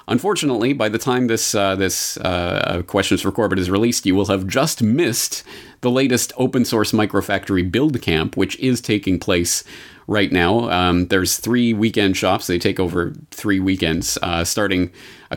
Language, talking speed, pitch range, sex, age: English, 170 wpm, 90-125 Hz, male, 30-49